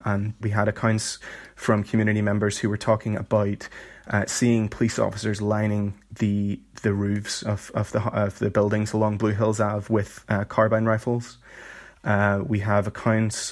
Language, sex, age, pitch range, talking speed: English, male, 20-39, 105-115 Hz, 170 wpm